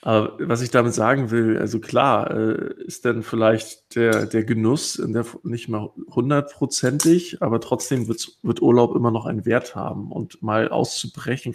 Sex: male